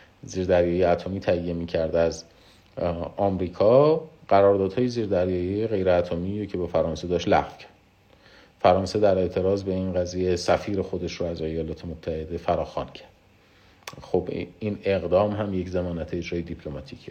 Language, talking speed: Persian, 130 wpm